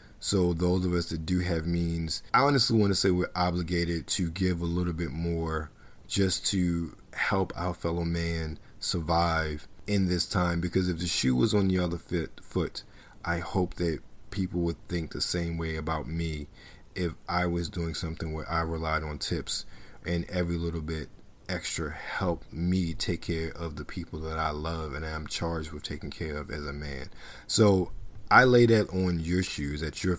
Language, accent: English, American